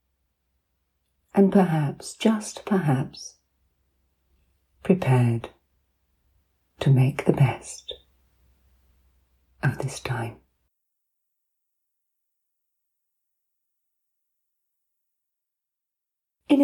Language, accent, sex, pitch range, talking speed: English, British, female, 125-195 Hz, 45 wpm